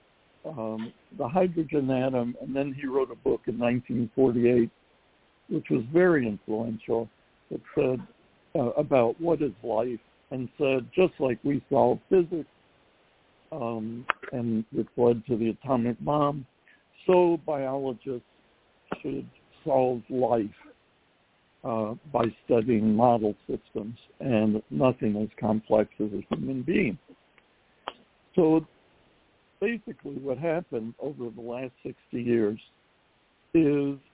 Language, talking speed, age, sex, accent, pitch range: English, 115 wpm, 60-79, male, American, 115-145 Hz